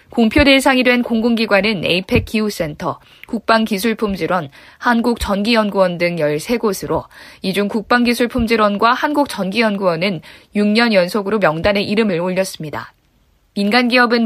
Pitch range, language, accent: 180-235 Hz, Korean, native